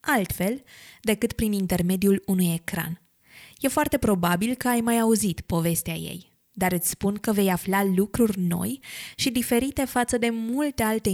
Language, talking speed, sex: Romanian, 155 wpm, female